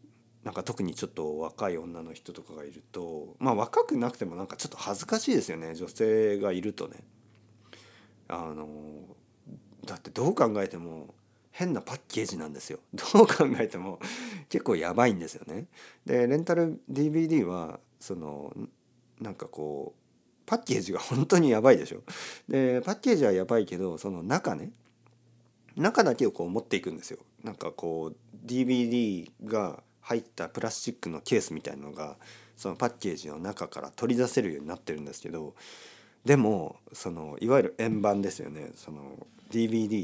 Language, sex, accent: Japanese, male, native